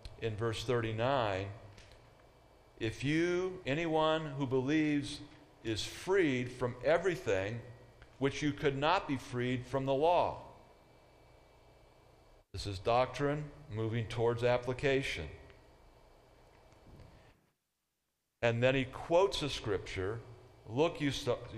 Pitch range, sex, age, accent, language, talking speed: 110-145 Hz, male, 50-69, American, English, 100 wpm